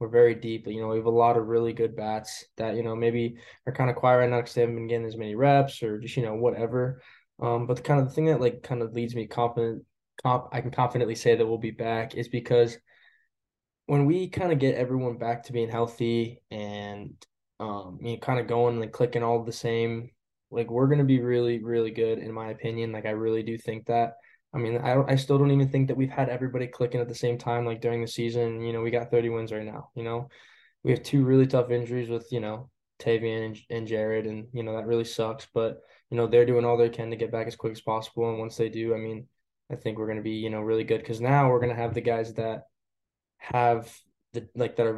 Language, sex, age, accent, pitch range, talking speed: English, male, 10-29, American, 115-120 Hz, 260 wpm